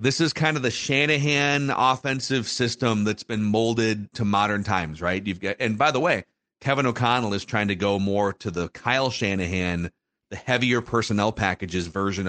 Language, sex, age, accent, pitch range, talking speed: English, male, 40-59, American, 100-125 Hz, 180 wpm